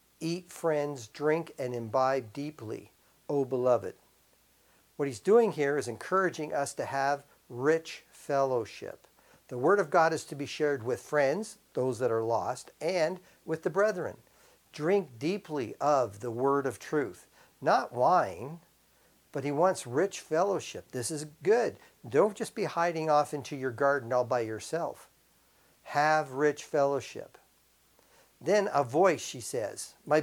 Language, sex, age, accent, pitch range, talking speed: English, male, 50-69, American, 135-170 Hz, 145 wpm